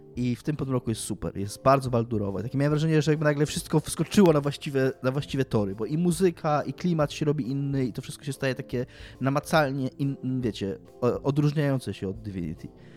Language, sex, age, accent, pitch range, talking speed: Polish, male, 20-39, native, 100-135 Hz, 200 wpm